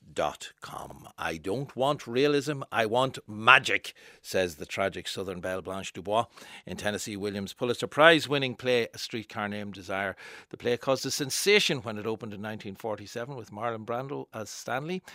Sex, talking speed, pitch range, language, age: male, 160 wpm, 100-135 Hz, English, 60-79